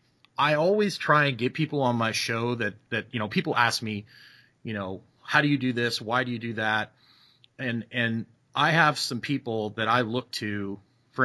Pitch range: 110-130 Hz